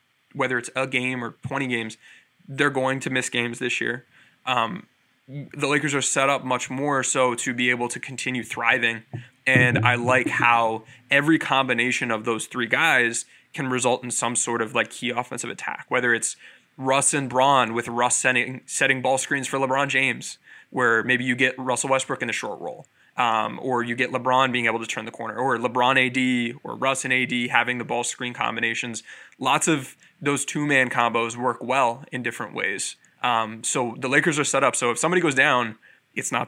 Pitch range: 120-135 Hz